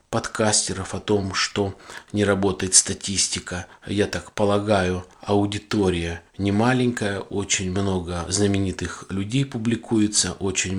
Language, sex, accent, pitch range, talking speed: Russian, male, native, 90-110 Hz, 100 wpm